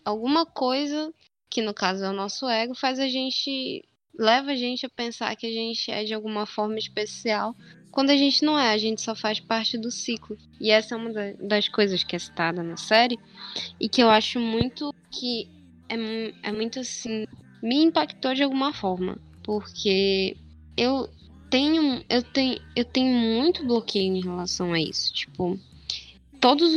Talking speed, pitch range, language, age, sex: 175 wpm, 195-255 Hz, Portuguese, 10-29, female